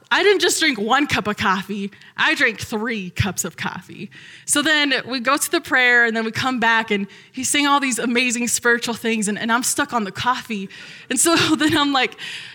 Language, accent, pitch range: English, American, 210-295 Hz